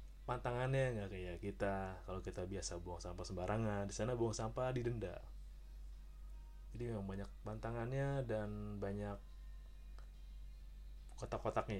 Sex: male